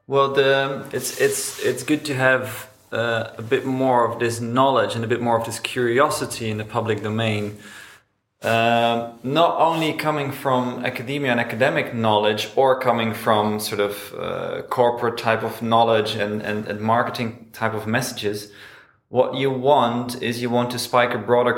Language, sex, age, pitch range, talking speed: German, male, 20-39, 110-130 Hz, 170 wpm